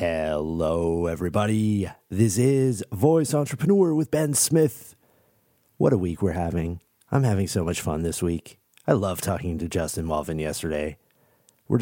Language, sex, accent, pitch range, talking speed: English, male, American, 85-120 Hz, 145 wpm